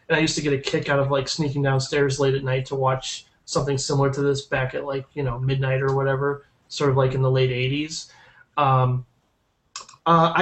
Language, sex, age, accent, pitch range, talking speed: English, male, 20-39, American, 130-160 Hz, 215 wpm